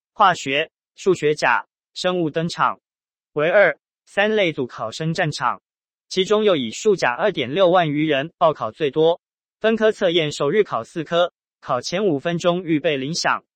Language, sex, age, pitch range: Chinese, male, 20-39, 150-185 Hz